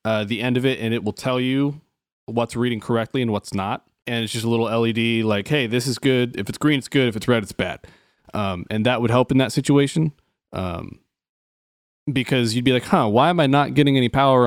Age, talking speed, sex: 20-39, 240 wpm, male